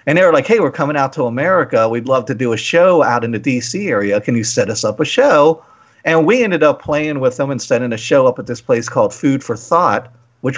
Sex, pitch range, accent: male, 120-180 Hz, American